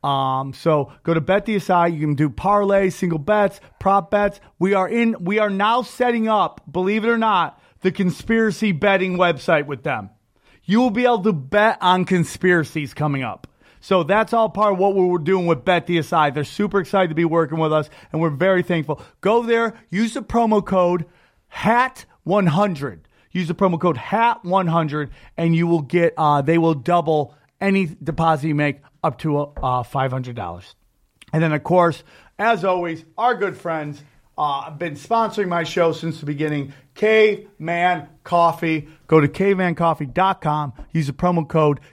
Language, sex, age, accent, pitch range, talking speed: English, male, 30-49, American, 150-195 Hz, 175 wpm